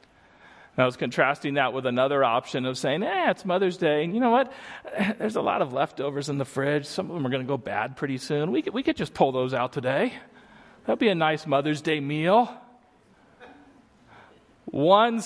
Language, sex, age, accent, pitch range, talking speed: English, male, 40-59, American, 125-185 Hz, 205 wpm